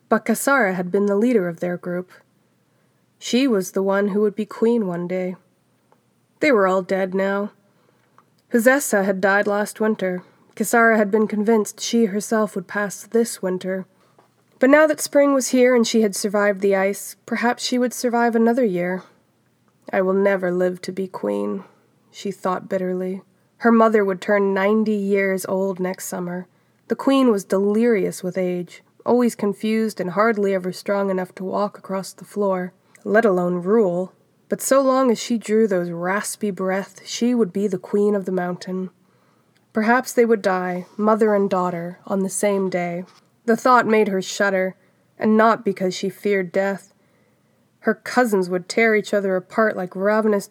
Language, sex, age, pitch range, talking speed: English, female, 20-39, 185-220 Hz, 170 wpm